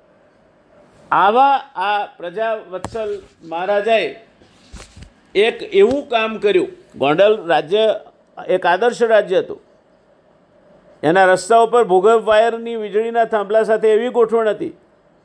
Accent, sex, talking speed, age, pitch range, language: native, male, 80 wpm, 50-69, 200-230 Hz, Gujarati